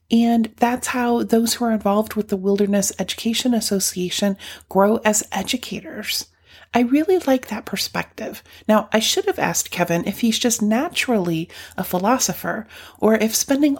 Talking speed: 150 wpm